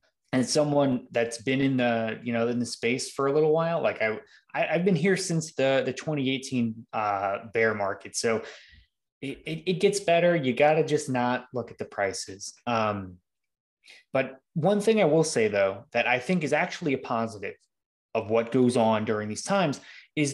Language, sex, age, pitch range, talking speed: English, male, 20-39, 120-155 Hz, 195 wpm